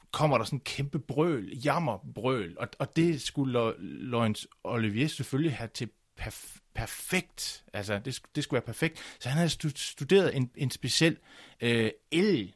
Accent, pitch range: native, 100-145 Hz